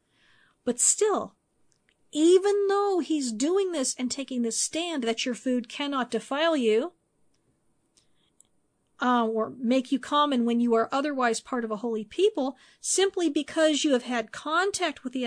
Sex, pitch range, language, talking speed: female, 245-325 Hz, English, 155 wpm